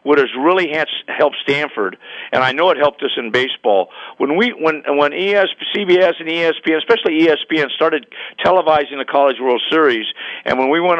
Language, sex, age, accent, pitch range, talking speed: English, male, 50-69, American, 140-205 Hz, 185 wpm